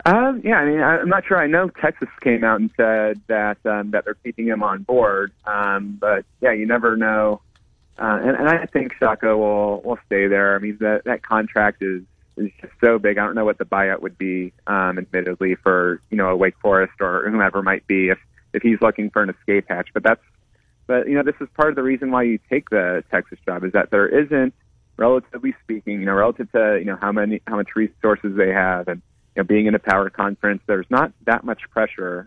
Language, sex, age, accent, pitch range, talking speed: English, male, 30-49, American, 95-110 Hz, 230 wpm